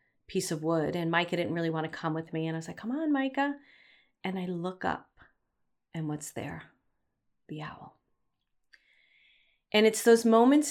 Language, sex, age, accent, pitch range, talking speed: English, female, 30-49, American, 155-185 Hz, 180 wpm